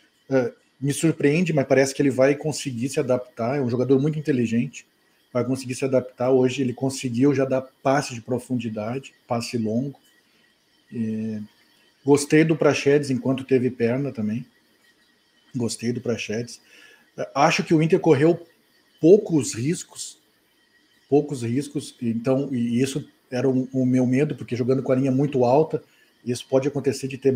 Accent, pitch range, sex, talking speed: Brazilian, 125-145 Hz, male, 155 wpm